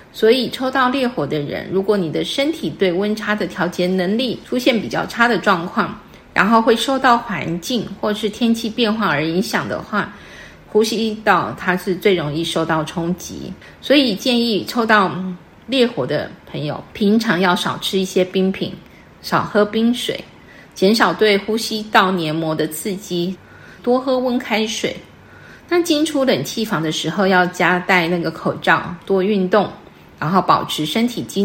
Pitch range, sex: 180-230 Hz, female